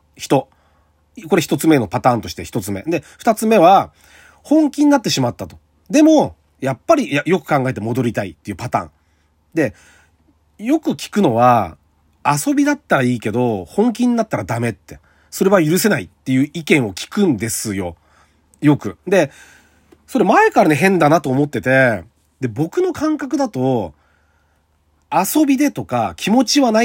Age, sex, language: 40-59, male, Japanese